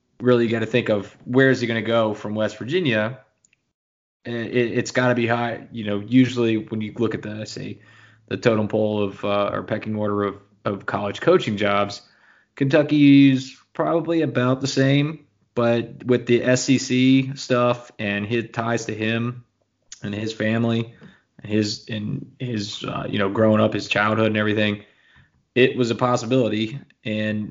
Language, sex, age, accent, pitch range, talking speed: English, male, 20-39, American, 105-125 Hz, 175 wpm